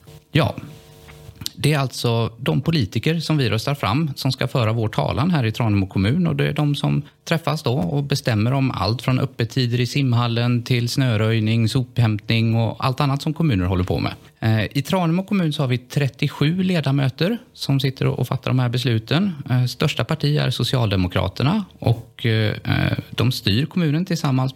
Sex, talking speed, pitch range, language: male, 170 wpm, 115-150 Hz, Swedish